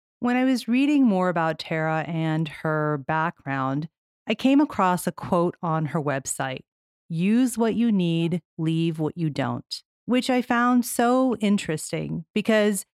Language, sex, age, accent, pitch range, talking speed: English, female, 40-59, American, 165-225 Hz, 150 wpm